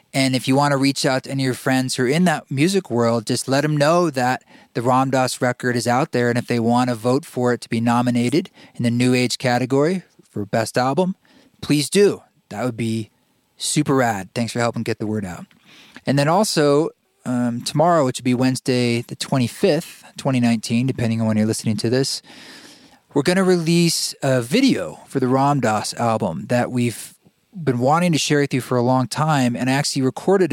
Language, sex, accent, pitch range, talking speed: English, male, American, 115-145 Hz, 210 wpm